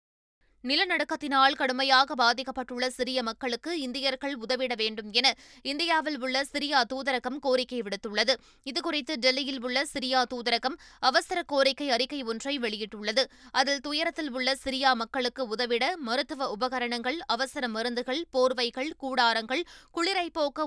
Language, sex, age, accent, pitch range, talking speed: Tamil, female, 20-39, native, 245-290 Hz, 110 wpm